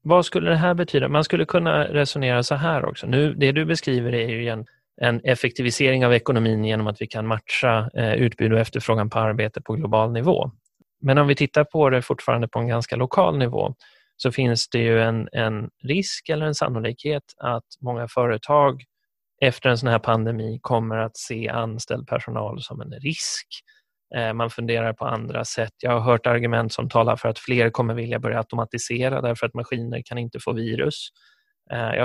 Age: 30-49